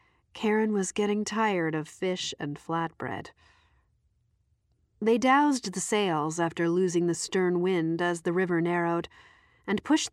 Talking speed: 135 wpm